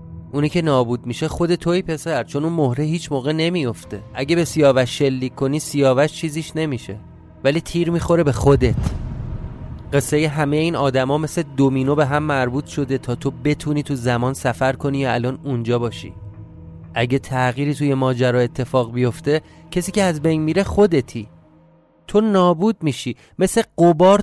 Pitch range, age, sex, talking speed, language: 120-155 Hz, 30-49, male, 160 wpm, Persian